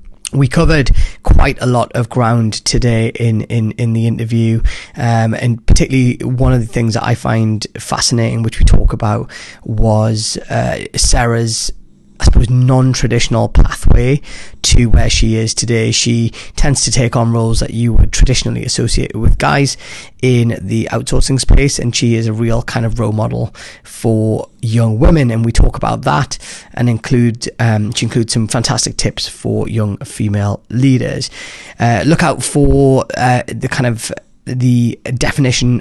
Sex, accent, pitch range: male, British, 110-125 Hz